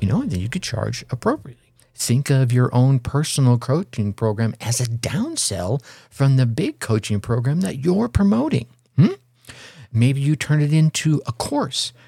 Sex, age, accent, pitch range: male, 50-69, American, 105-130 Hz